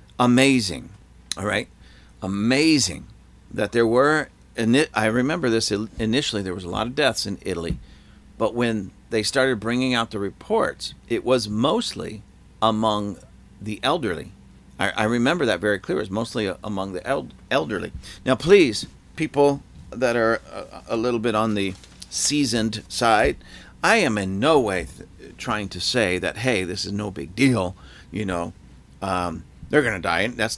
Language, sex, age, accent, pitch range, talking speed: English, male, 50-69, American, 95-125 Hz, 165 wpm